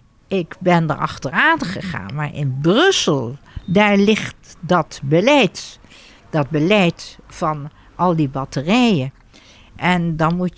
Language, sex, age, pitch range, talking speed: Dutch, female, 60-79, 150-205 Hz, 120 wpm